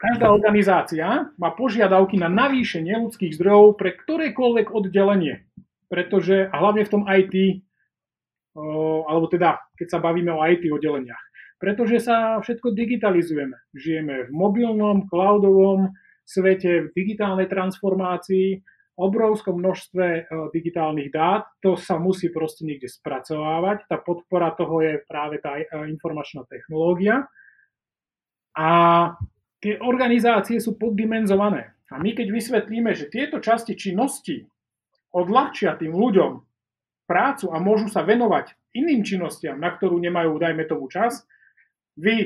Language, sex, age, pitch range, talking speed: Slovak, male, 30-49, 165-210 Hz, 120 wpm